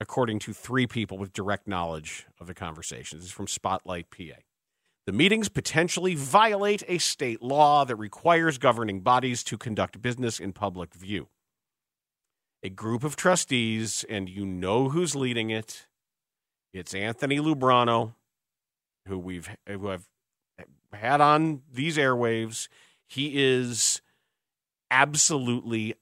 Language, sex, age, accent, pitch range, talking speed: English, male, 40-59, American, 100-130 Hz, 130 wpm